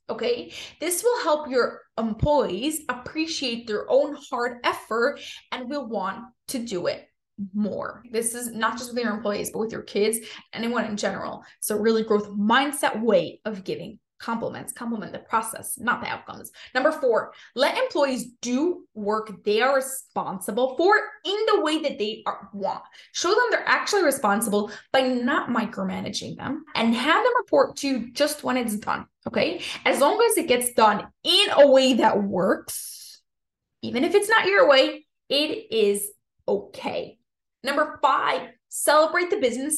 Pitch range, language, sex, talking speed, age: 225-310 Hz, English, female, 160 wpm, 20-39